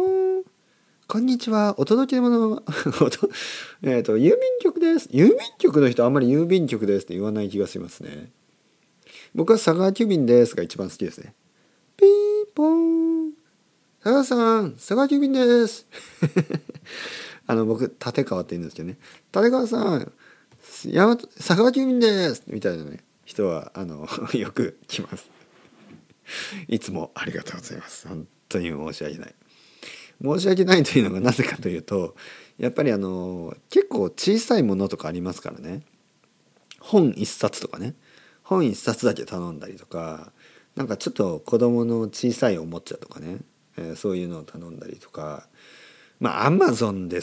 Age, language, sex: 40-59, Japanese, male